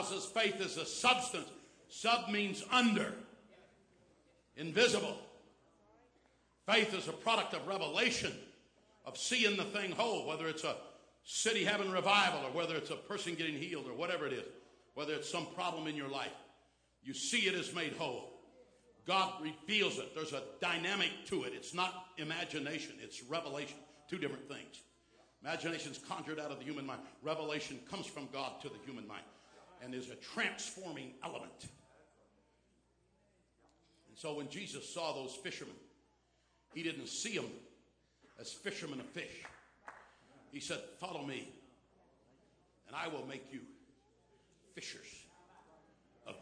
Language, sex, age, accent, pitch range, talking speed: English, male, 60-79, American, 155-205 Hz, 145 wpm